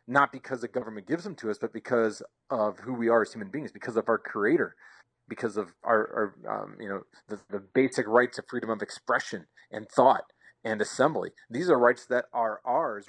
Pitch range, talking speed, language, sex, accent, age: 115-135 Hz, 205 wpm, English, male, American, 40-59